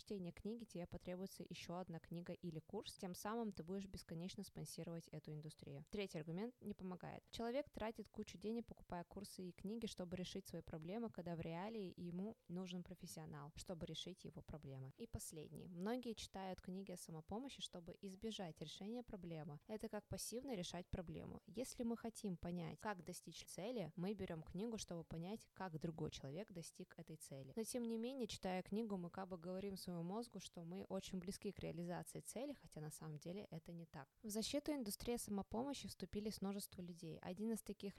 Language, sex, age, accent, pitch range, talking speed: Russian, female, 20-39, native, 170-215 Hz, 175 wpm